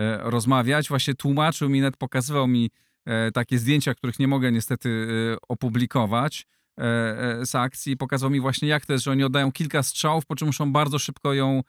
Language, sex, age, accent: Polish, male, 40-59, native